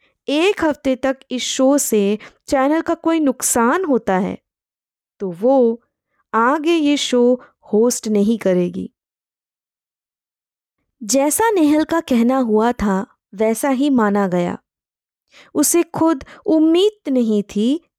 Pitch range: 215-290 Hz